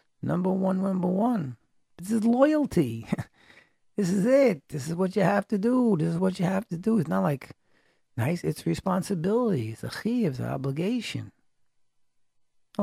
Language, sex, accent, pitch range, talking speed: English, male, American, 125-190 Hz, 175 wpm